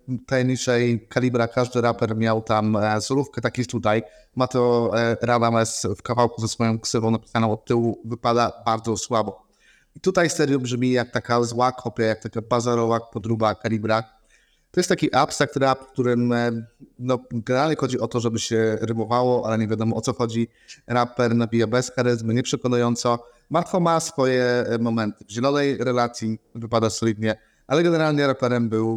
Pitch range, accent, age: 115-130 Hz, native, 30-49